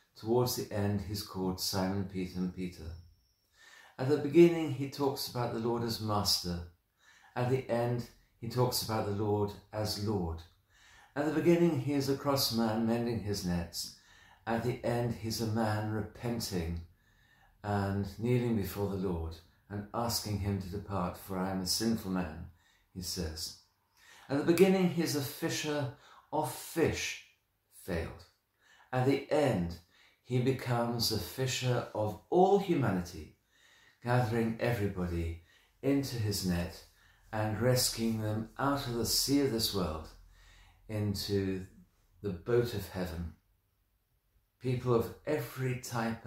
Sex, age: male, 50-69